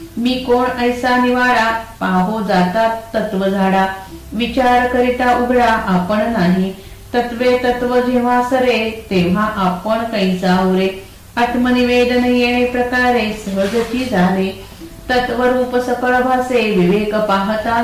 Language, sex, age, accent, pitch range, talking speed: Marathi, female, 50-69, native, 200-250 Hz, 85 wpm